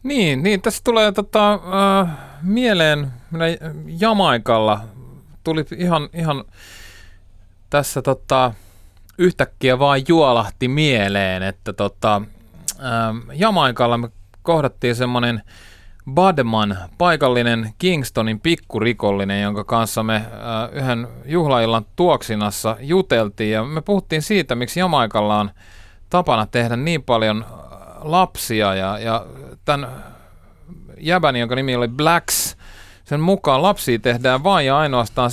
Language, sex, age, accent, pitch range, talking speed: Finnish, male, 30-49, native, 110-165 Hz, 110 wpm